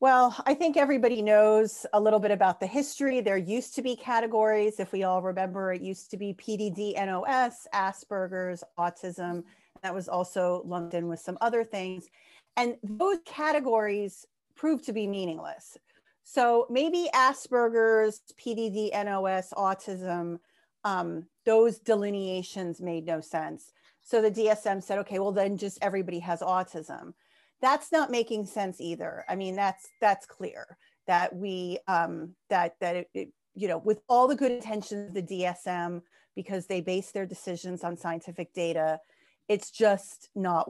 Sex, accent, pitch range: female, American, 185-225 Hz